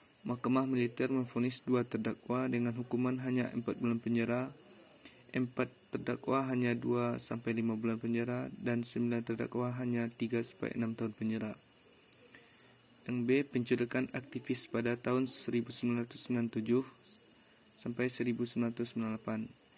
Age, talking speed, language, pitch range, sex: 20-39, 110 wpm, Indonesian, 115-125 Hz, male